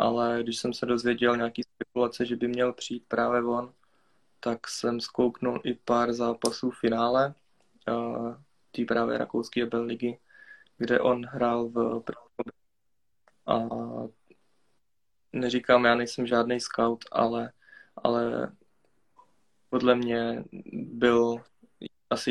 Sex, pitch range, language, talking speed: male, 115-120 Hz, Czech, 115 wpm